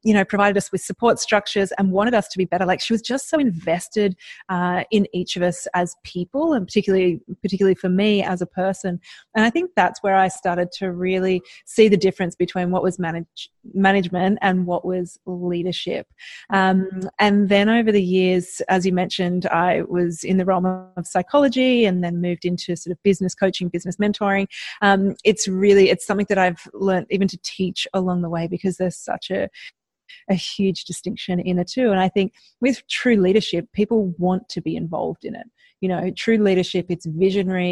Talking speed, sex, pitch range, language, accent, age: 195 wpm, female, 180-205 Hz, English, Australian, 30-49